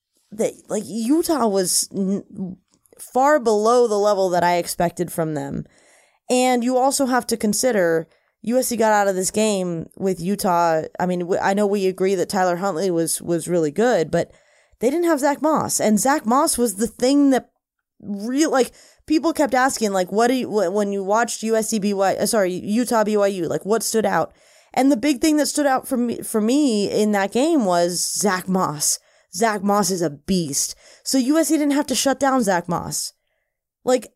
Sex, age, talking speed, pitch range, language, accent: female, 20-39, 190 wpm, 185-255 Hz, English, American